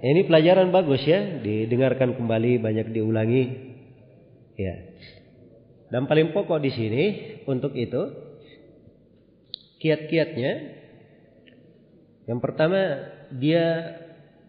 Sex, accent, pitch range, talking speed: male, native, 115-160 Hz, 85 wpm